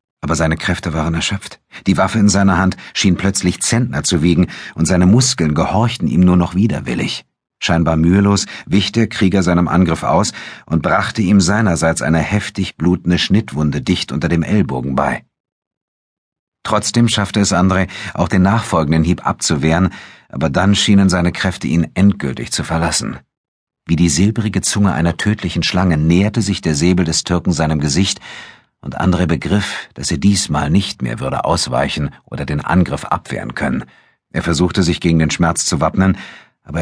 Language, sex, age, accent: German, male, 50-69, German